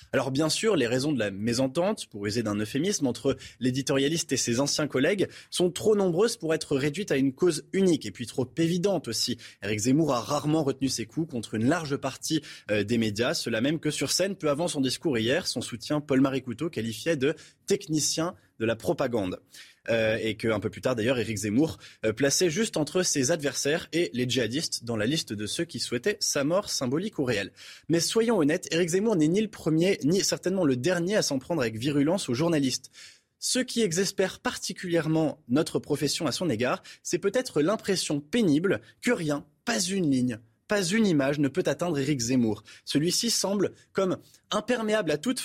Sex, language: male, French